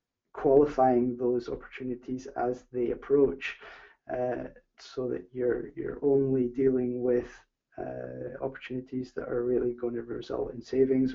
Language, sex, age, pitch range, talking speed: English, male, 20-39, 125-140 Hz, 130 wpm